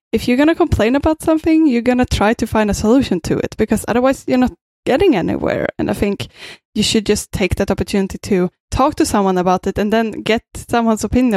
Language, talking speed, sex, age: English, 225 wpm, female, 10-29